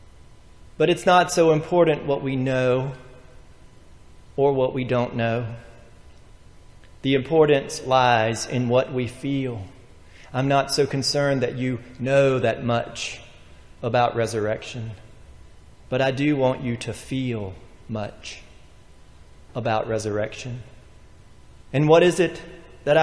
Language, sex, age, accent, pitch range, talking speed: English, male, 40-59, American, 115-150 Hz, 120 wpm